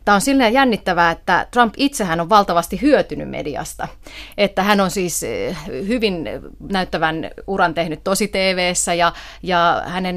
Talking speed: 150 wpm